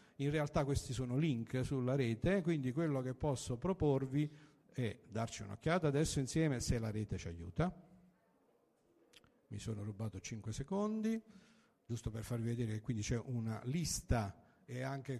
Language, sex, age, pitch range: Italian, male, 50-69, 115-150 Hz